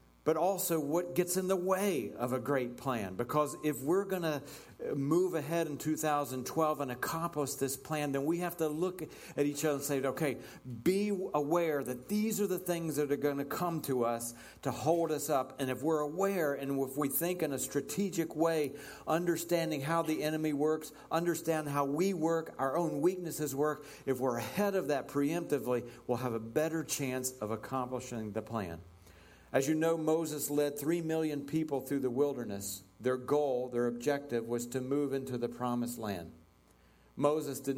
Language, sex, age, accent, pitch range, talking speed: English, male, 50-69, American, 115-150 Hz, 185 wpm